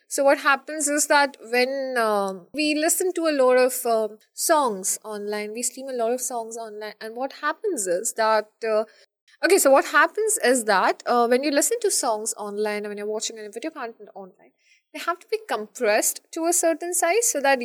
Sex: female